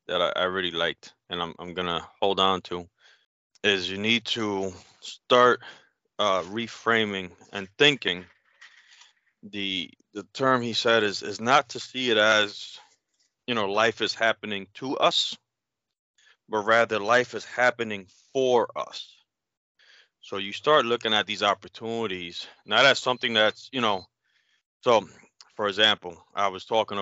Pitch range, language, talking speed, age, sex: 95-115 Hz, English, 145 wpm, 30-49, male